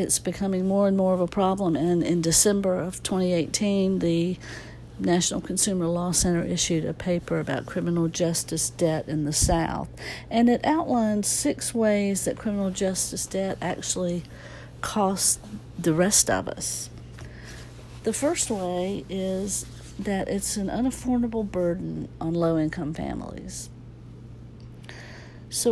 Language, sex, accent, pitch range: English, female, American, 170-200 Hz